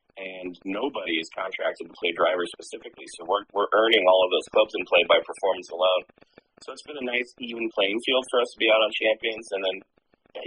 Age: 30-49